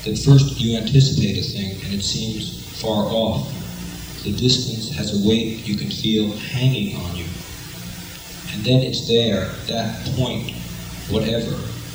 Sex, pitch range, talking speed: male, 90-125 Hz, 145 wpm